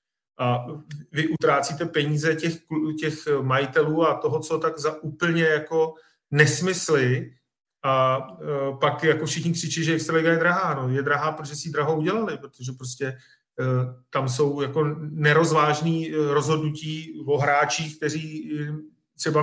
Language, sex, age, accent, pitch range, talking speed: Czech, male, 40-59, native, 140-160 Hz, 135 wpm